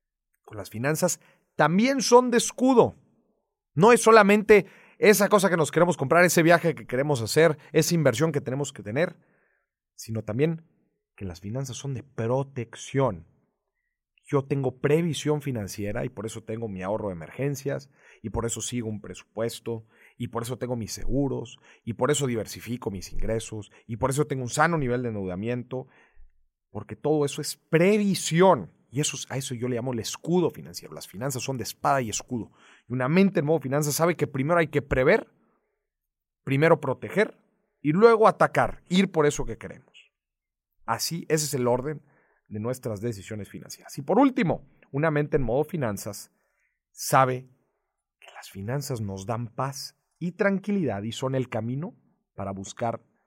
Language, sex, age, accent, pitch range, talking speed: Spanish, male, 40-59, Mexican, 115-165 Hz, 170 wpm